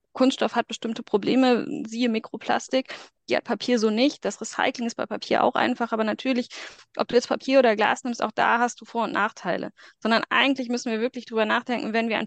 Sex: female